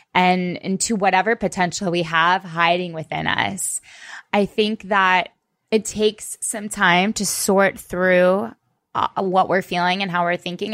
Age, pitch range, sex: 20-39, 180-215 Hz, female